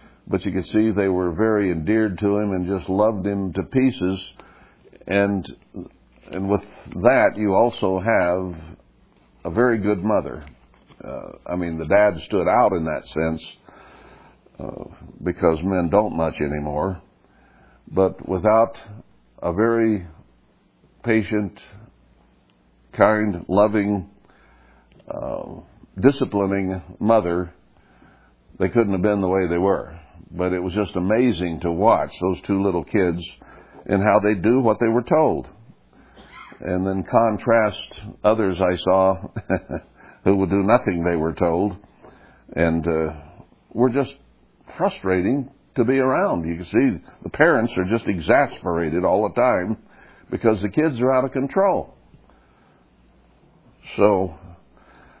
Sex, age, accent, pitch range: male, 60-79, American, 85-105 Hz